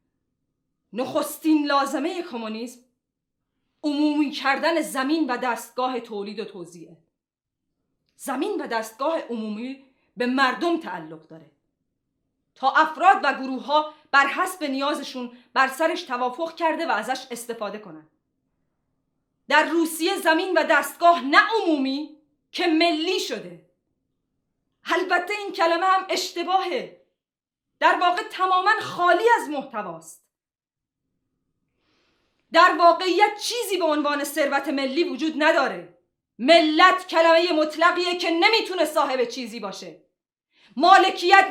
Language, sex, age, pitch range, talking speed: Persian, female, 30-49, 255-345 Hz, 105 wpm